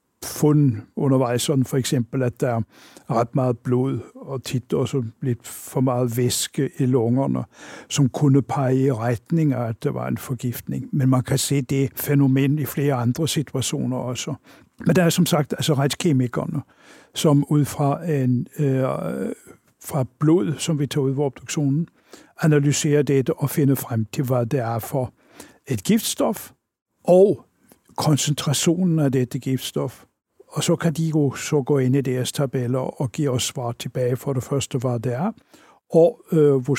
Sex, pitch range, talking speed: male, 130-150 Hz, 170 wpm